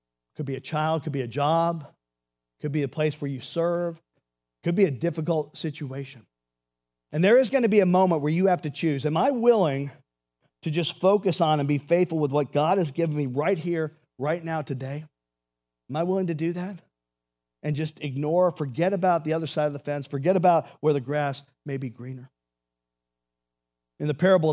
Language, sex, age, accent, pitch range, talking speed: English, male, 40-59, American, 115-160 Hz, 200 wpm